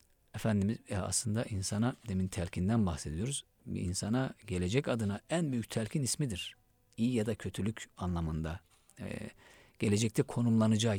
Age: 50-69